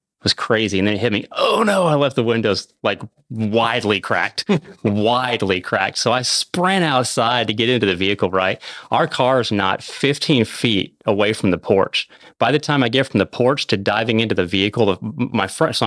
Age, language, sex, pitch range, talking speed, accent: 30-49, English, male, 95-120 Hz, 210 wpm, American